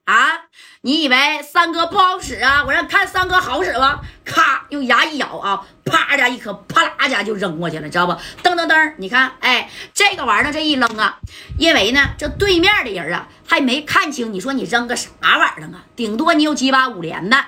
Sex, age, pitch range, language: female, 30-49, 235-315 Hz, Chinese